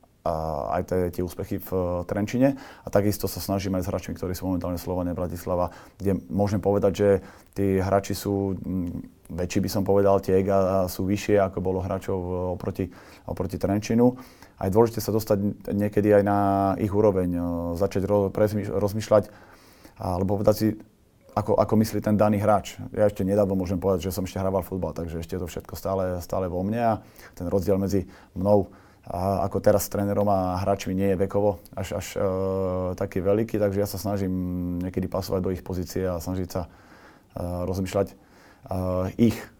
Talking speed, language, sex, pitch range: 175 wpm, Slovak, male, 90-100 Hz